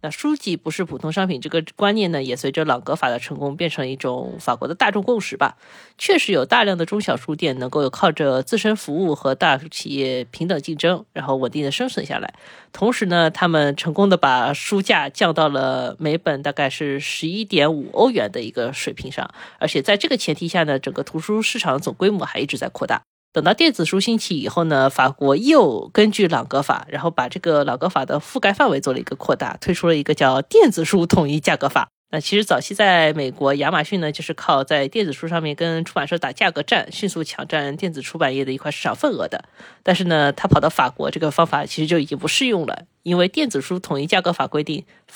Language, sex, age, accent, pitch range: Chinese, female, 20-39, native, 140-190 Hz